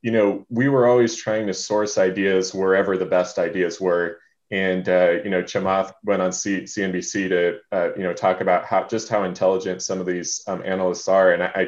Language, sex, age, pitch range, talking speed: English, male, 20-39, 90-100 Hz, 210 wpm